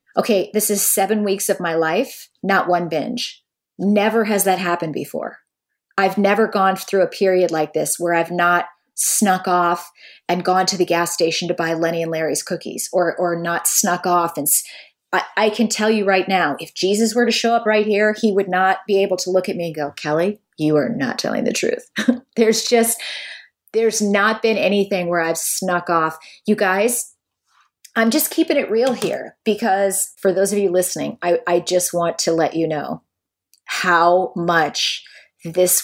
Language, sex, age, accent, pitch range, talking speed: English, female, 30-49, American, 170-210 Hz, 195 wpm